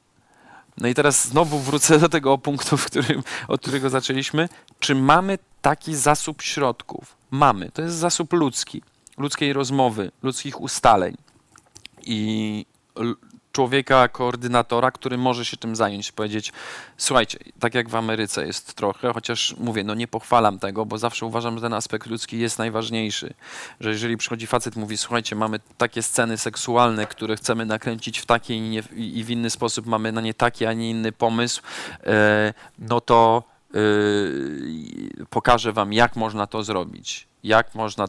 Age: 40-59